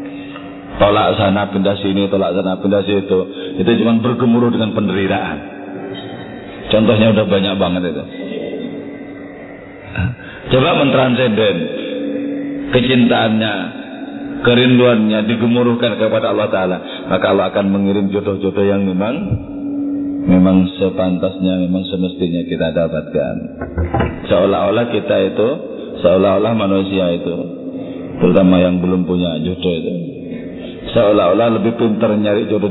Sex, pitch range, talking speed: male, 90-115 Hz, 105 wpm